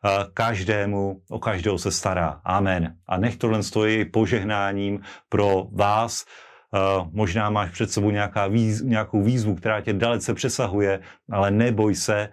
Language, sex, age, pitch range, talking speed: Slovak, male, 40-59, 100-115 Hz, 135 wpm